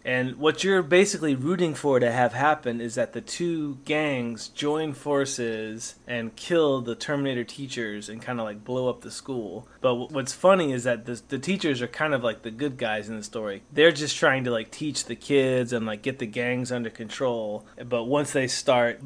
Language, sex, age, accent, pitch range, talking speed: English, male, 30-49, American, 120-140 Hz, 210 wpm